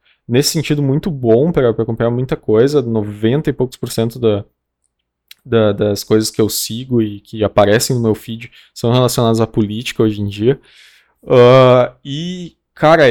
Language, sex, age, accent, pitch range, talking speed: Portuguese, male, 20-39, Brazilian, 110-135 Hz, 165 wpm